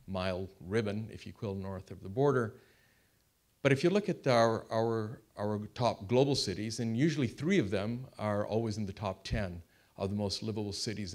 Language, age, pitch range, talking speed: English, 50-69, 95-115 Hz, 190 wpm